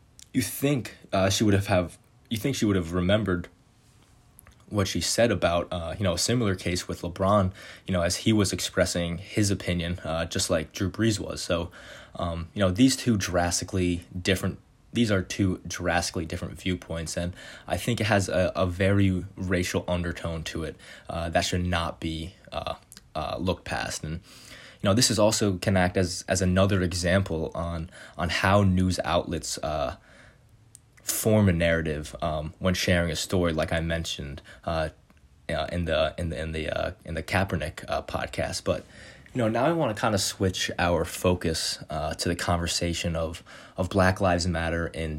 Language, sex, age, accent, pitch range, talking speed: English, male, 20-39, American, 85-100 Hz, 185 wpm